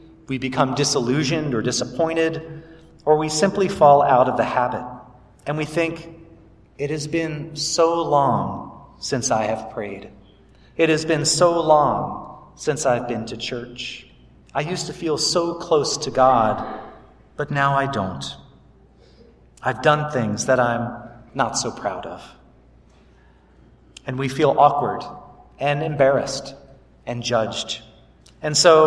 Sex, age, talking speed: male, 40-59, 135 wpm